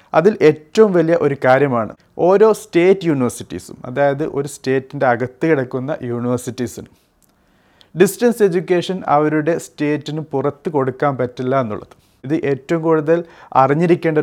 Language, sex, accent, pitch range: Malayalam, male, native, 125-160 Hz